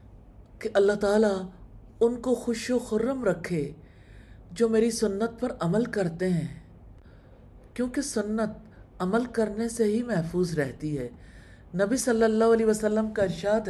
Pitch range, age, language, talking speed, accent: 145-220 Hz, 50-69, English, 140 wpm, Indian